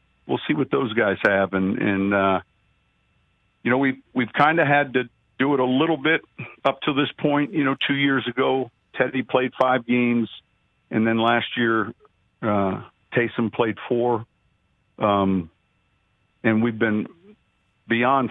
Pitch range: 100-120 Hz